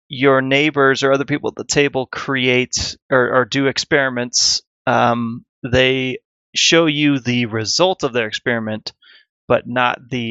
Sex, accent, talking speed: male, American, 145 wpm